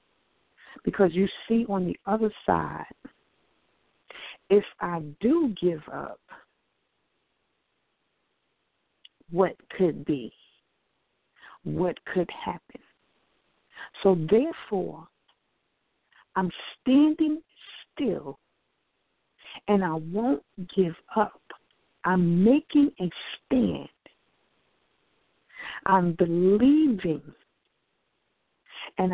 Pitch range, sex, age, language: 180-275 Hz, female, 50-69, English